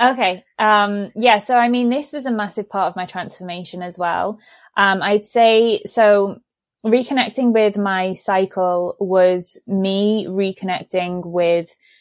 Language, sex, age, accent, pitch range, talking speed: English, female, 20-39, British, 175-205 Hz, 140 wpm